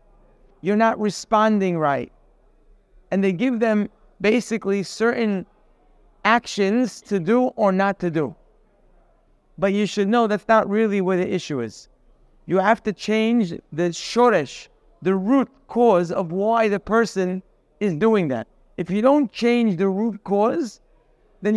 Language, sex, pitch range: English, male, 180-225 Hz